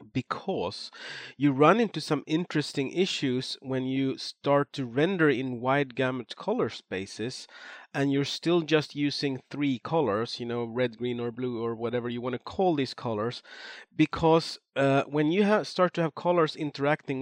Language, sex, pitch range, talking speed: English, male, 120-150 Hz, 165 wpm